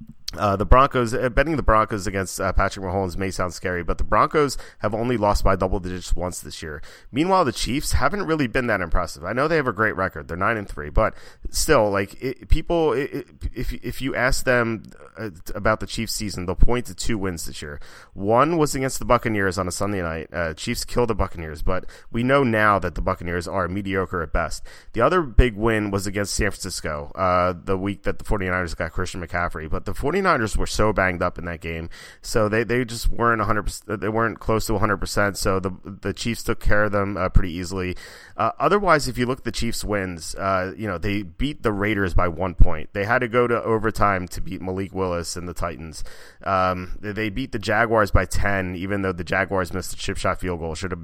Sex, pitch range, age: male, 90-115 Hz, 30-49